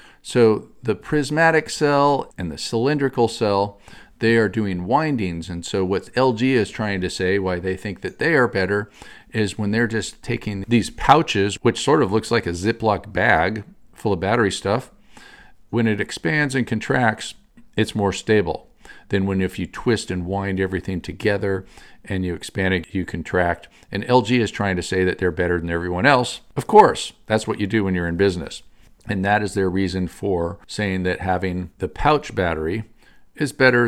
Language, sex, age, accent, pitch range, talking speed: English, male, 50-69, American, 95-120 Hz, 185 wpm